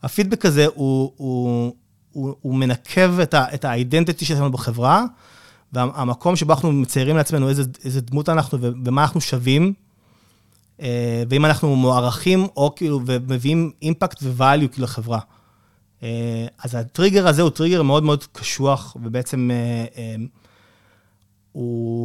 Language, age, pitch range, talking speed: Hebrew, 30-49, 120-165 Hz, 125 wpm